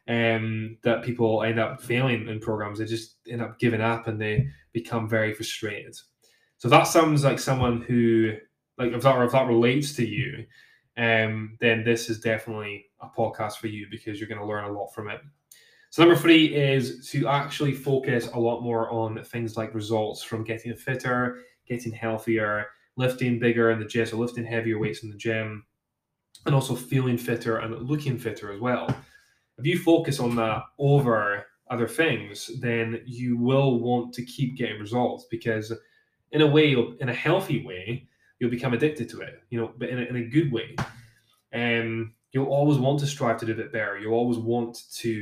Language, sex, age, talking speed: English, male, 10-29, 185 wpm